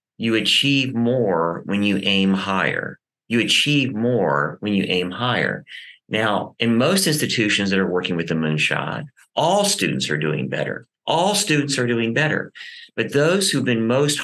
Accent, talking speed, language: American, 165 wpm, English